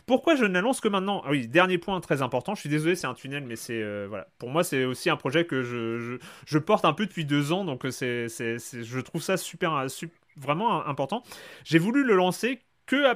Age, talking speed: 30-49, 245 wpm